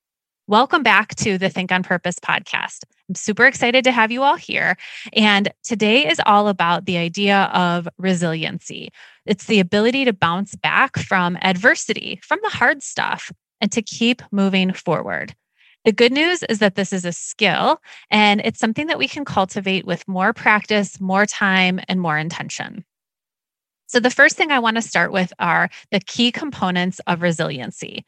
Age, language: 20-39, English